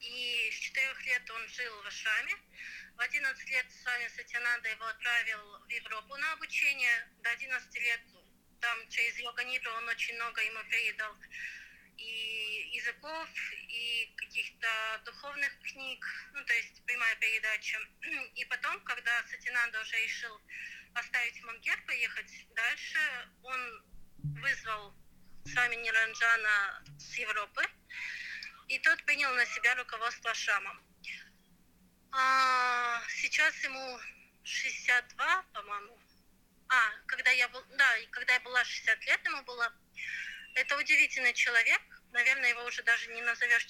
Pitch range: 230-265 Hz